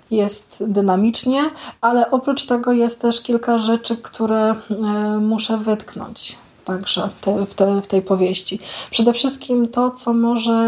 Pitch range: 205-230 Hz